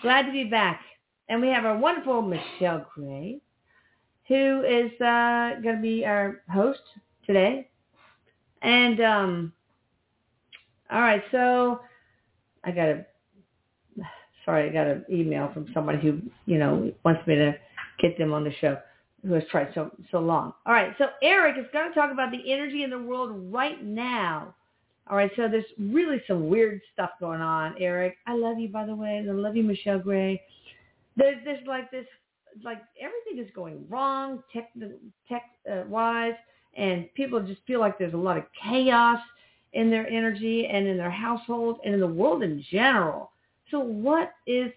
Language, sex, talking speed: English, female, 170 wpm